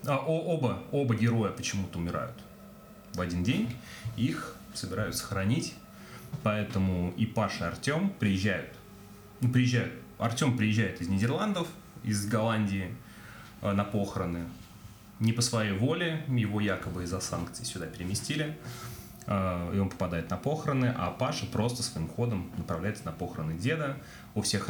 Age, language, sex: 30-49, Russian, male